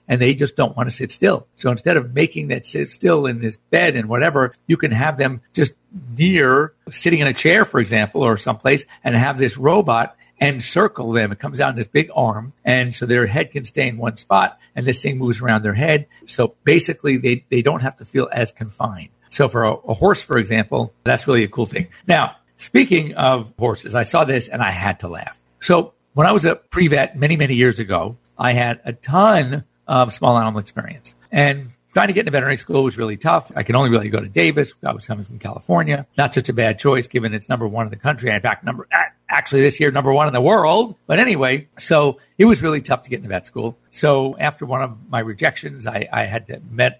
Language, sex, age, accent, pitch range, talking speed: English, male, 50-69, American, 115-145 Hz, 230 wpm